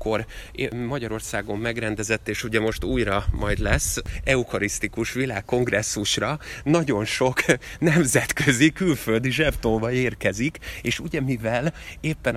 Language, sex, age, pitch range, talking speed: Hungarian, male, 30-49, 110-135 Hz, 95 wpm